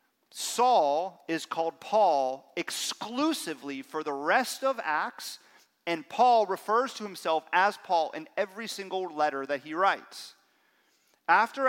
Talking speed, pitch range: 130 wpm, 155-225 Hz